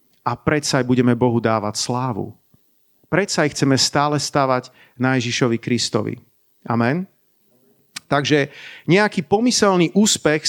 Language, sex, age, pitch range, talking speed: Slovak, male, 40-59, 125-155 Hz, 115 wpm